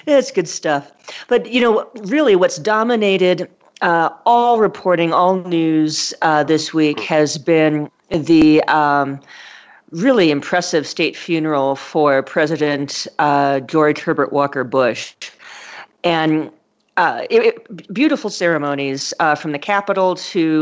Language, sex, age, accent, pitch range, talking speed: English, female, 40-59, American, 150-190 Hz, 125 wpm